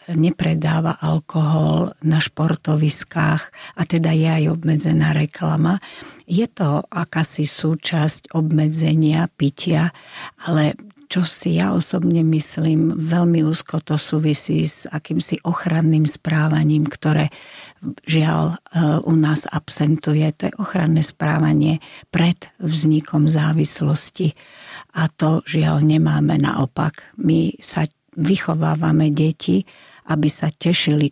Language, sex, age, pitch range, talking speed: Slovak, female, 50-69, 150-170 Hz, 105 wpm